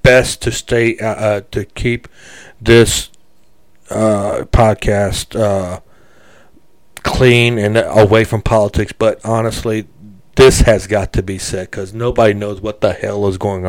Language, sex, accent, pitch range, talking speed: English, male, American, 100-120 Hz, 140 wpm